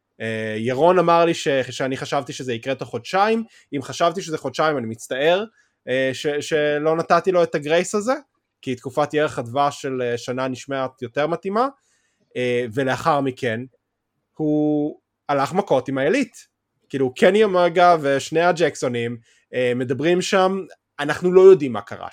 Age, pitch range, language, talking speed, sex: 20-39, 125-160 Hz, Hebrew, 150 wpm, male